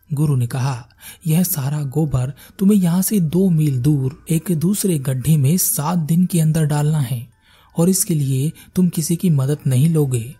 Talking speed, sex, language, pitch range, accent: 180 wpm, male, Hindi, 125-165 Hz, native